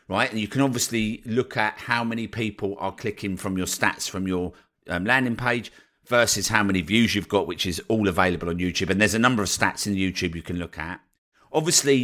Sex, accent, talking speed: male, British, 225 wpm